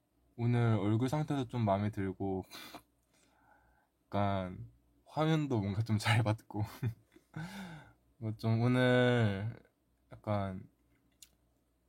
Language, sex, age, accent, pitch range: Korean, male, 20-39, native, 100-120 Hz